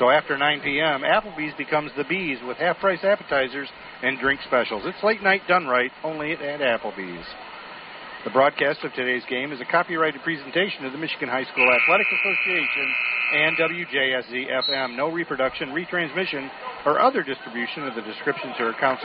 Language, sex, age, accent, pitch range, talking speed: English, male, 50-69, American, 135-185 Hz, 165 wpm